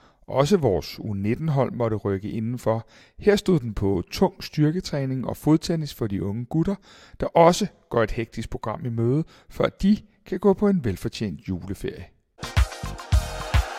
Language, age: Danish, 60-79